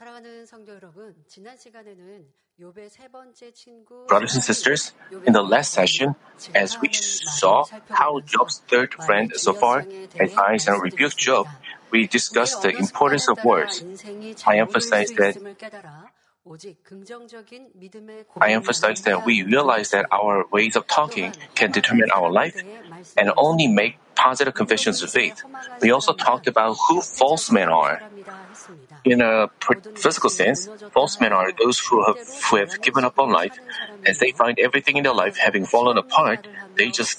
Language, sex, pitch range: Korean, male, 135-220 Hz